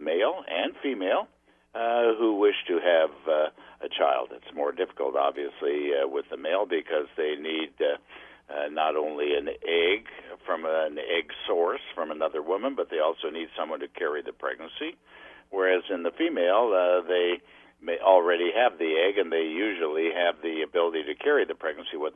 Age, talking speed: 60-79, 180 wpm